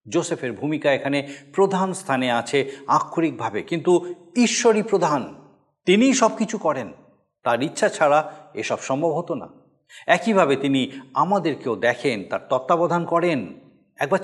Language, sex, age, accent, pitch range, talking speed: Bengali, male, 50-69, native, 140-195 Hz, 120 wpm